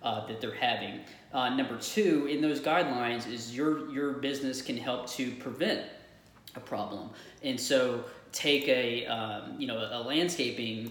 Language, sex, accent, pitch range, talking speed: English, male, American, 115-140 Hz, 160 wpm